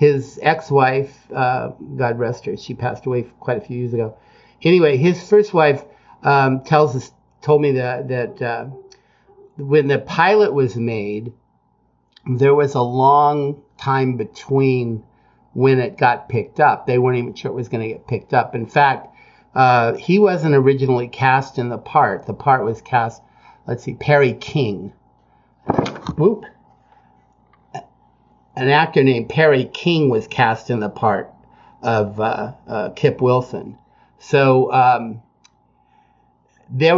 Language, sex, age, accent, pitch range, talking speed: English, male, 50-69, American, 115-140 Hz, 145 wpm